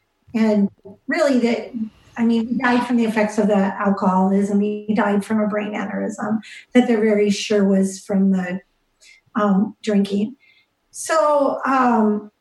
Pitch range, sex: 210-250 Hz, female